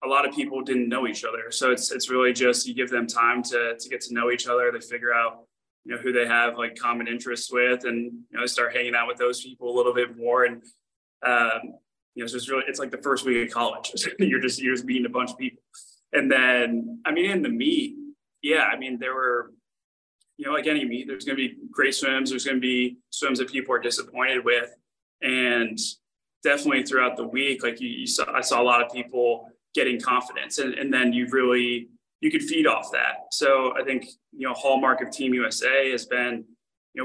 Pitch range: 120-135 Hz